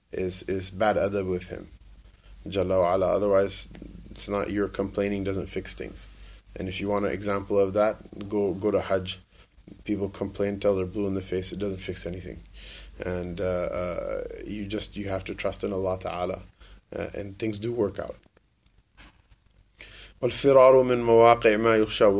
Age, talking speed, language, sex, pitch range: 20-39, 160 wpm, English, male, 95-120 Hz